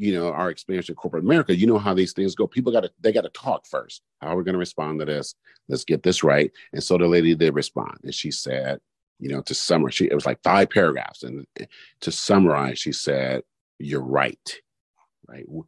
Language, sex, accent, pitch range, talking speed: English, male, American, 80-115 Hz, 230 wpm